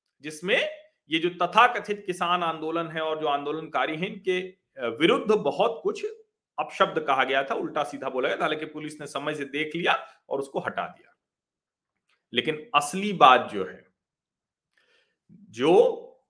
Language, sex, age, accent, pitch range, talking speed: Hindi, male, 40-59, native, 165-245 Hz, 150 wpm